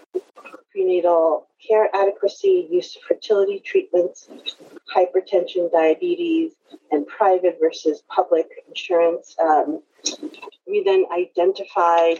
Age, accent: 30-49, American